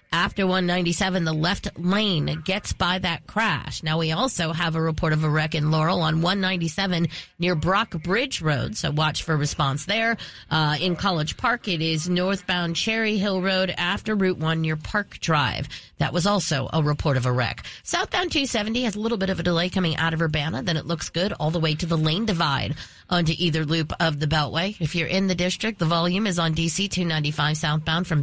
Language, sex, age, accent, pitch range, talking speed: English, female, 40-59, American, 155-195 Hz, 210 wpm